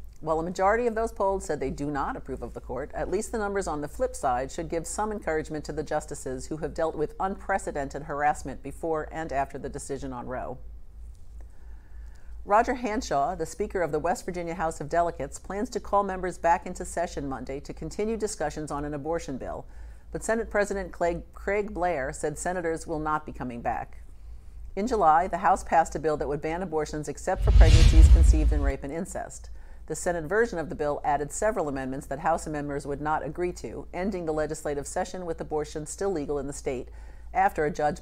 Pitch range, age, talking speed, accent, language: 140-180 Hz, 50-69, 205 wpm, American, English